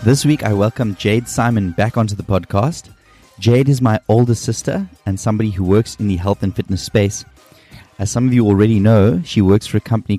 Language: English